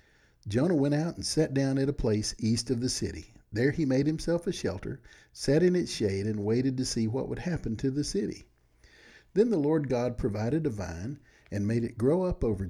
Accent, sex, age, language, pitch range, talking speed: American, male, 50-69, English, 105-145 Hz, 215 wpm